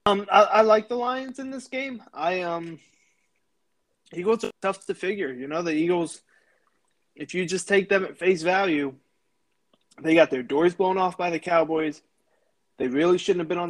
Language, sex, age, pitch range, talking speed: English, male, 20-39, 150-190 Hz, 190 wpm